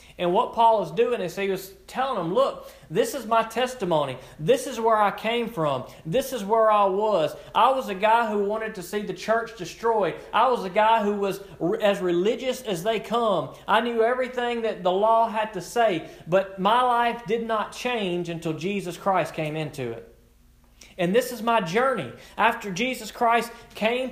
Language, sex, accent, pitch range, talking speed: English, male, American, 170-230 Hz, 195 wpm